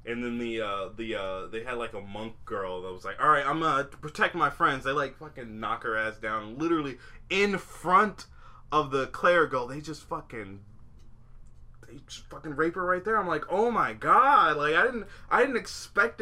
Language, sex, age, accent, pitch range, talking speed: English, male, 20-39, American, 100-140 Hz, 210 wpm